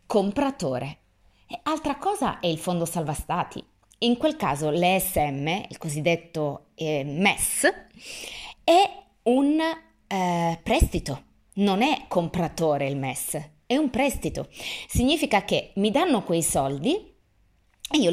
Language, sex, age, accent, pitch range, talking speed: Italian, female, 30-49, native, 160-265 Hz, 120 wpm